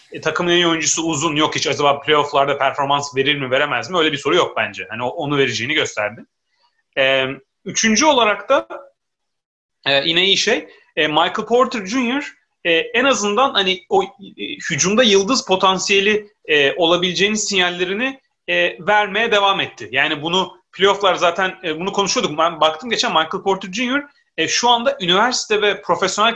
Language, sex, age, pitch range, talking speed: Turkish, male, 30-49, 155-220 Hz, 135 wpm